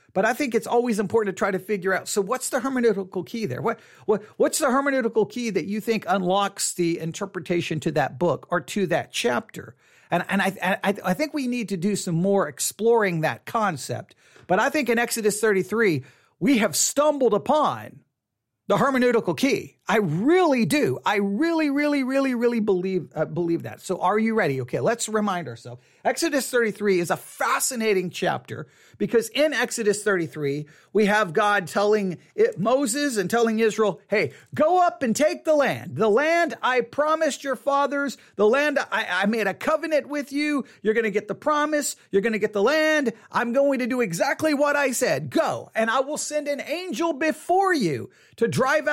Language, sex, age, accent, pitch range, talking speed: English, male, 40-59, American, 195-280 Hz, 190 wpm